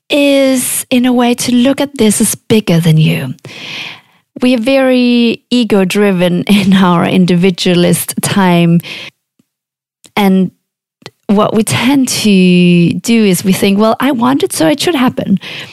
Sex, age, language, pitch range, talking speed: female, 30-49, English, 185-240 Hz, 140 wpm